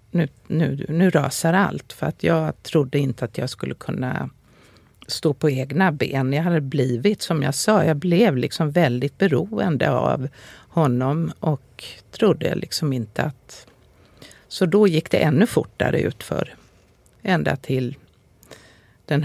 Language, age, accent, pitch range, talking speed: Swedish, 50-69, native, 130-170 Hz, 145 wpm